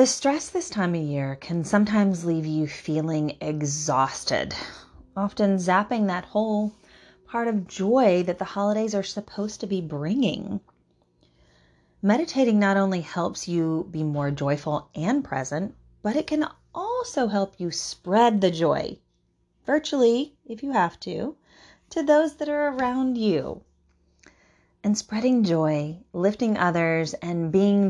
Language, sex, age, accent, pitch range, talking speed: English, female, 30-49, American, 150-215 Hz, 140 wpm